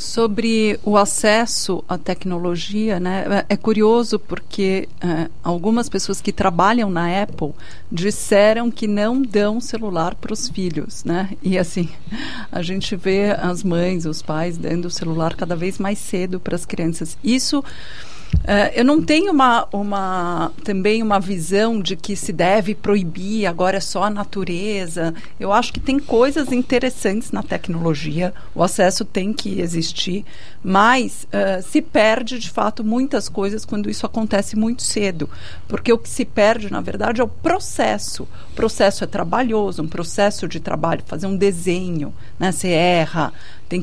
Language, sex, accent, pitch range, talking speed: Portuguese, female, Brazilian, 180-235 Hz, 155 wpm